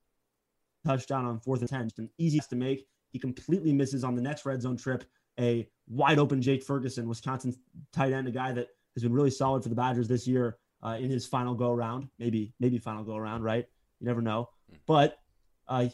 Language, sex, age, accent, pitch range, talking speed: English, male, 20-39, American, 120-145 Hz, 215 wpm